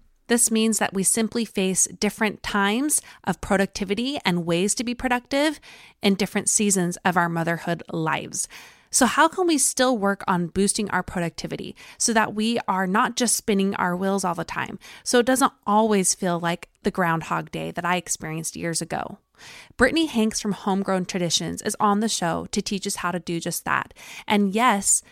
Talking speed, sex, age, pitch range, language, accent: 185 wpm, female, 20-39, 180-220 Hz, English, American